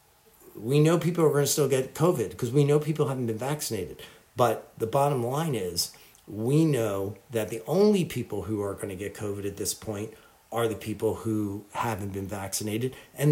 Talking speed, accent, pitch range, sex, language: 200 wpm, American, 110-140 Hz, male, English